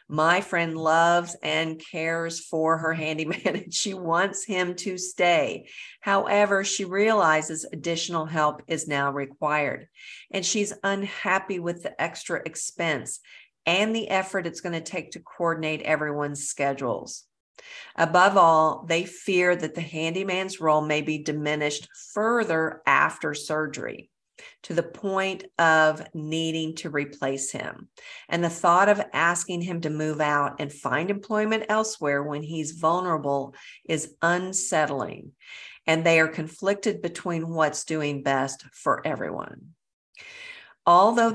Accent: American